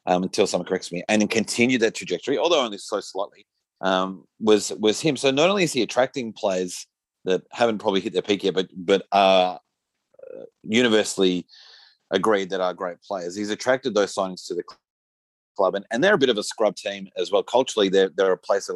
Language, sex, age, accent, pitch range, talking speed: English, male, 30-49, Australian, 95-115 Hz, 215 wpm